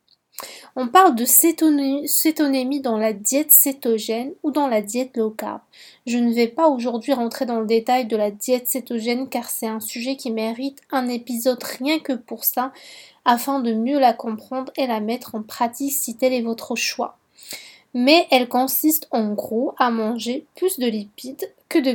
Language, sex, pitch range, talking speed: French, female, 230-280 Hz, 180 wpm